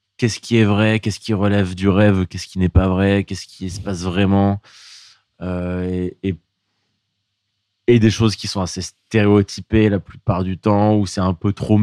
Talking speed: 195 wpm